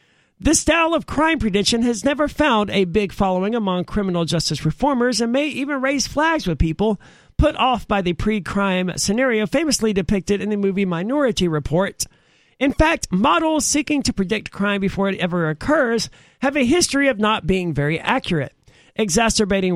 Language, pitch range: English, 185-255 Hz